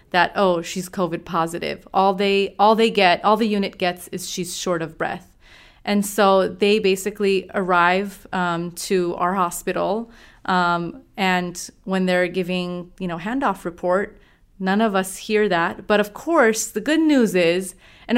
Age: 30-49